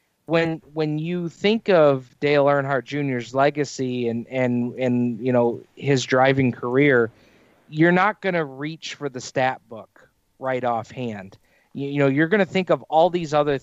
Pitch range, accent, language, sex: 125-160 Hz, American, English, male